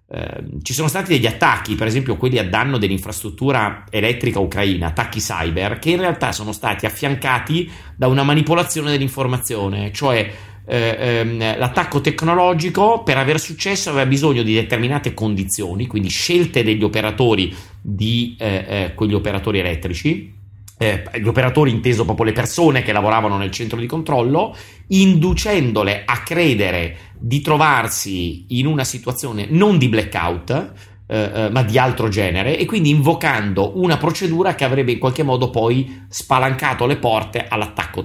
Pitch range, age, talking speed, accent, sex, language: 100-140 Hz, 30-49, 145 wpm, native, male, Italian